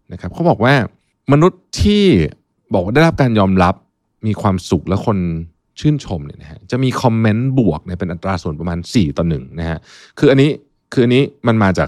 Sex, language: male, Thai